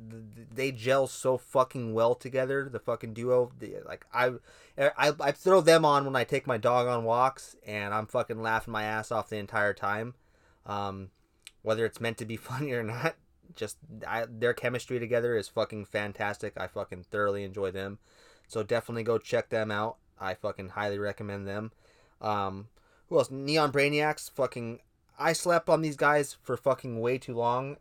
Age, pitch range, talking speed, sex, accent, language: 20-39, 105-125 Hz, 180 wpm, male, American, English